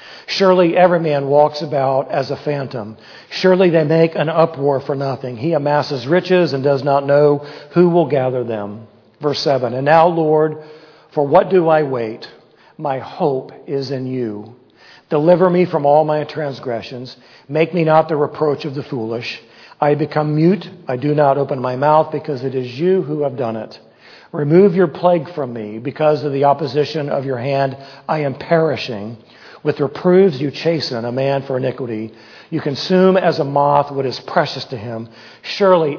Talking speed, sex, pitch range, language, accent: 175 wpm, male, 130-160 Hz, English, American